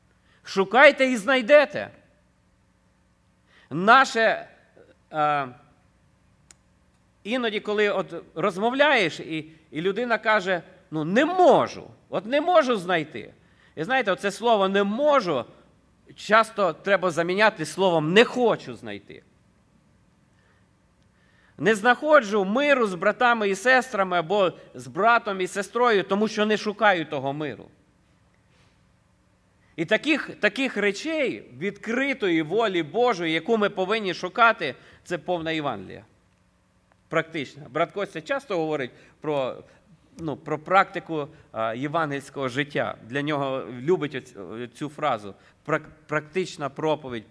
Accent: native